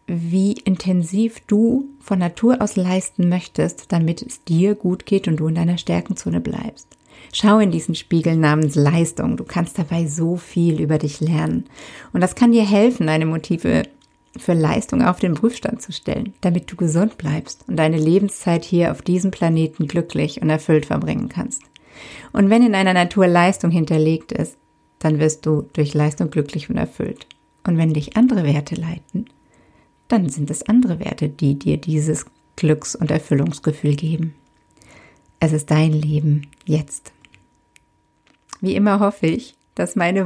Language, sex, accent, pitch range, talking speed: German, female, German, 155-190 Hz, 160 wpm